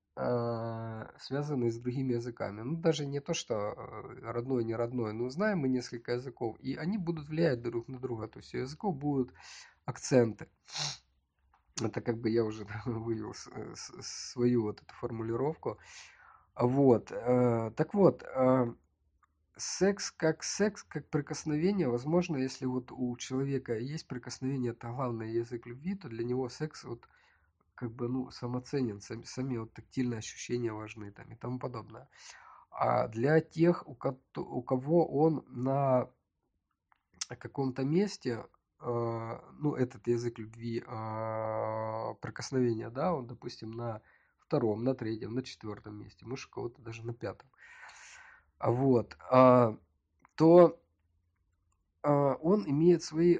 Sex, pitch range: male, 115-135 Hz